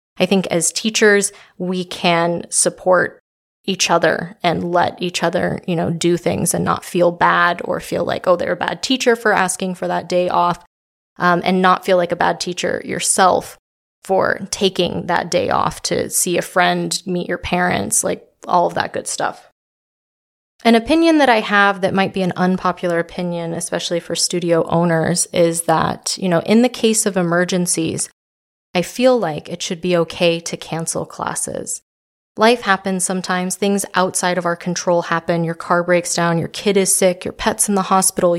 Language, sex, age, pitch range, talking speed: English, female, 20-39, 170-195 Hz, 185 wpm